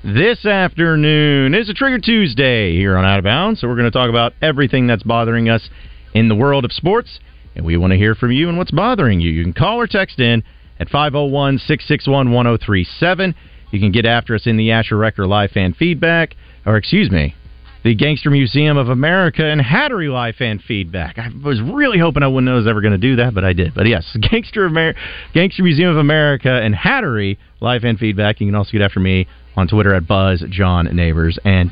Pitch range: 100-150 Hz